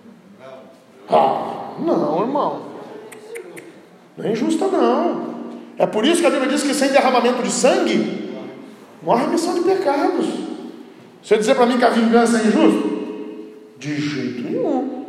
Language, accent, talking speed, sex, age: Portuguese, Brazilian, 145 wpm, male, 40-59